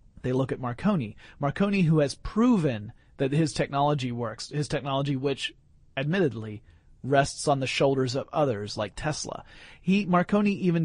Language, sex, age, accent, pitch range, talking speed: English, male, 30-49, American, 130-165 Hz, 150 wpm